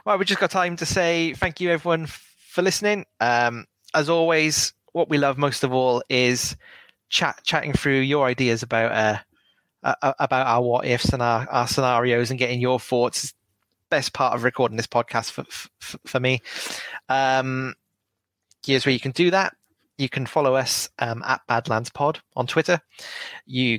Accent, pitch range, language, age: British, 120-150 Hz, English, 20-39